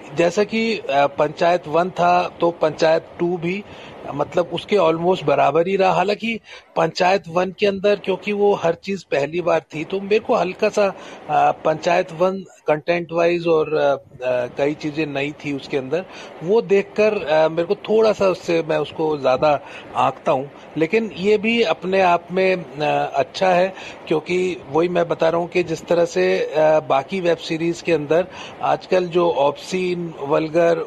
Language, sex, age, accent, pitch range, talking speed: Hindi, male, 30-49, native, 160-190 Hz, 160 wpm